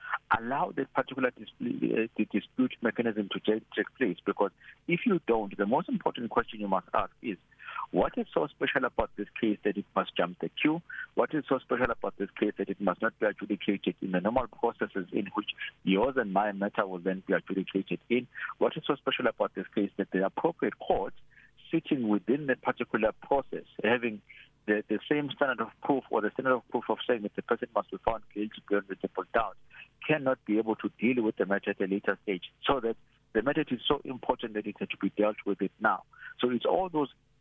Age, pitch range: 50-69, 100-130 Hz